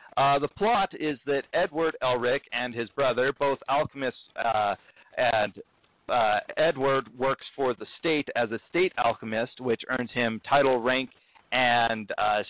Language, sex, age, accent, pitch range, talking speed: English, male, 50-69, American, 125-155 Hz, 145 wpm